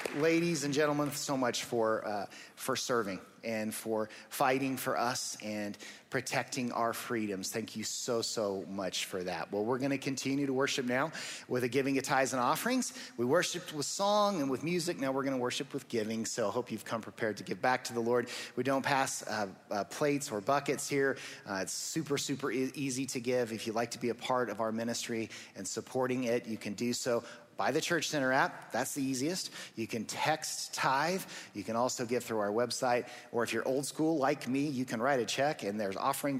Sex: male